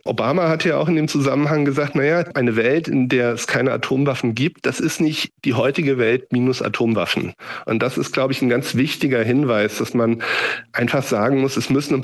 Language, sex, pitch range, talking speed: German, male, 115-155 Hz, 210 wpm